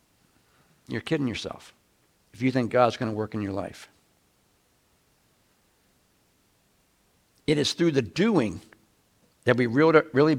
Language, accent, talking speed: English, American, 120 wpm